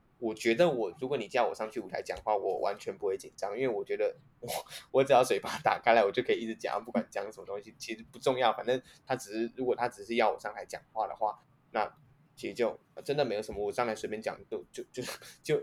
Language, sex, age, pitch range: Chinese, male, 10-29, 115-145 Hz